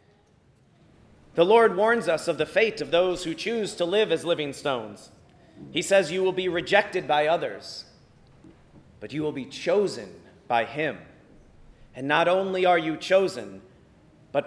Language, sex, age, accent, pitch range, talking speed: English, male, 40-59, American, 165-215 Hz, 160 wpm